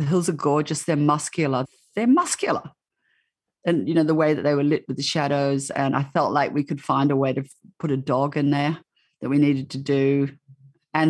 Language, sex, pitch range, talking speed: English, female, 135-165 Hz, 225 wpm